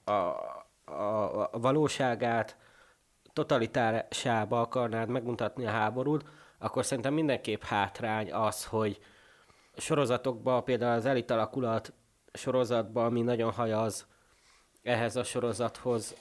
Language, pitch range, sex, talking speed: Hungarian, 110-125 Hz, male, 100 wpm